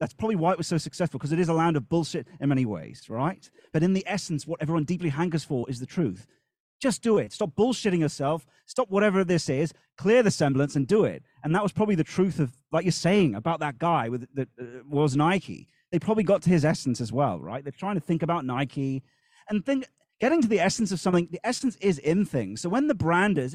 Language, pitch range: English, 140-190 Hz